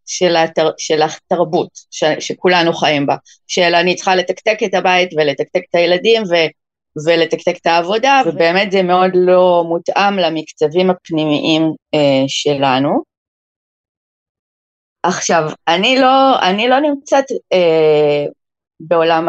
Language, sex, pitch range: Hebrew, female, 155-185 Hz